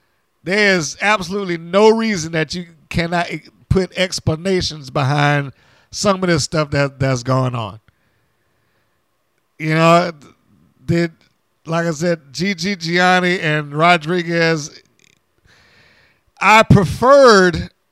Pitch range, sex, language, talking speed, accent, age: 145-180 Hz, male, English, 105 wpm, American, 50-69